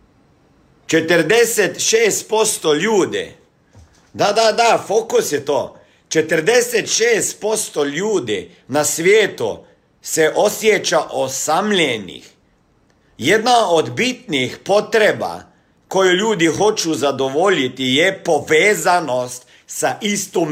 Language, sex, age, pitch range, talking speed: Croatian, male, 50-69, 150-225 Hz, 80 wpm